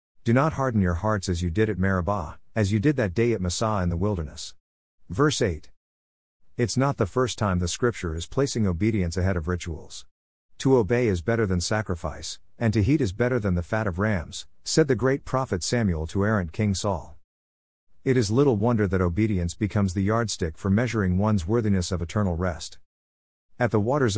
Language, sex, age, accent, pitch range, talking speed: English, male, 50-69, American, 90-115 Hz, 195 wpm